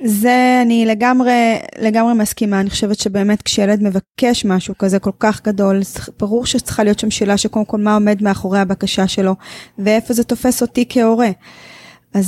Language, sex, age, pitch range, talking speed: Hebrew, female, 20-39, 195-235 Hz, 160 wpm